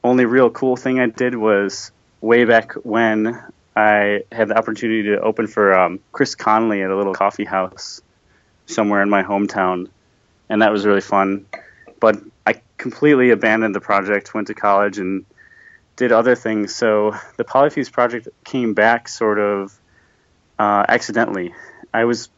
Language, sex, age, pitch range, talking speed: English, male, 30-49, 100-115 Hz, 160 wpm